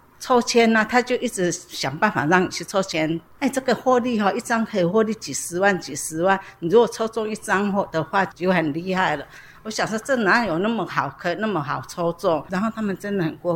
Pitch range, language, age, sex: 165-210 Hz, Chinese, 60-79, female